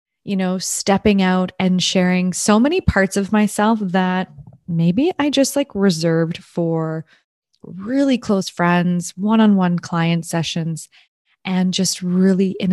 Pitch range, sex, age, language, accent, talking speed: 175-210 Hz, female, 20-39, English, American, 140 wpm